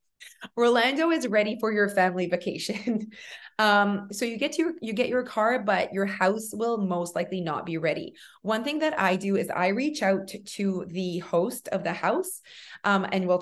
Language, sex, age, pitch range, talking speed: English, female, 20-39, 175-215 Hz, 195 wpm